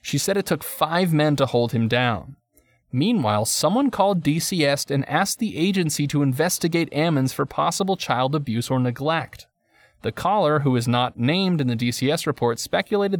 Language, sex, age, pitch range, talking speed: English, male, 30-49, 120-165 Hz, 175 wpm